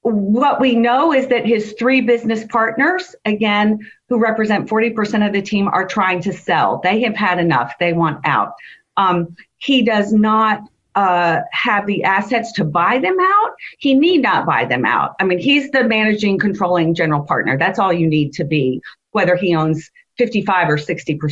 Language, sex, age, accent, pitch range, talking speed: English, female, 40-59, American, 180-245 Hz, 180 wpm